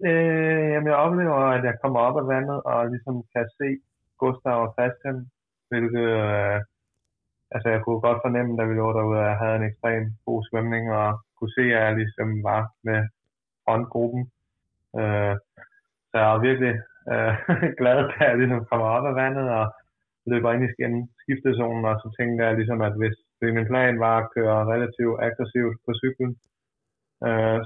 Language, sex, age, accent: Danish, male, 20-39, native